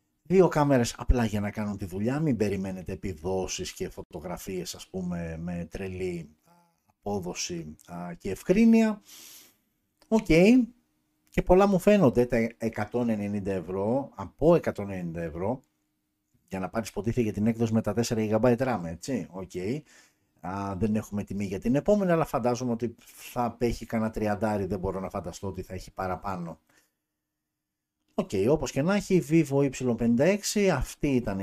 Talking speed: 135 wpm